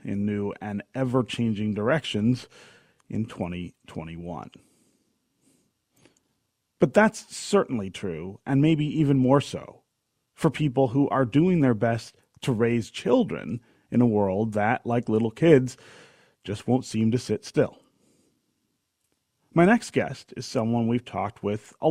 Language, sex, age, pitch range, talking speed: English, male, 30-49, 105-150 Hz, 130 wpm